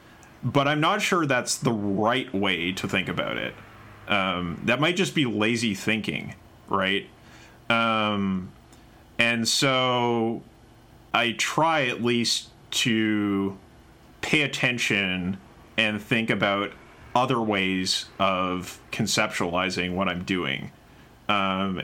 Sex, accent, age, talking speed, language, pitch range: male, American, 30-49, 115 wpm, English, 95-115 Hz